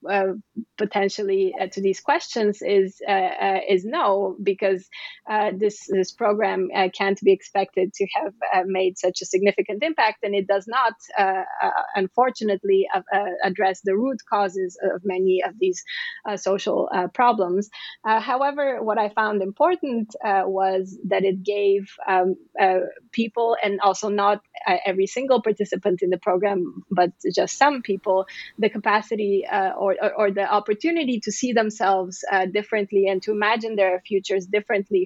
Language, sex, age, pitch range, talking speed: English, female, 20-39, 190-220 Hz, 165 wpm